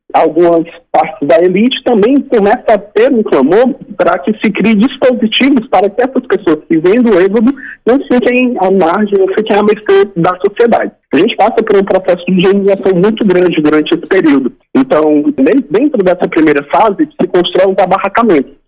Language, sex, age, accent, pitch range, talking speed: Portuguese, male, 40-59, Brazilian, 180-245 Hz, 175 wpm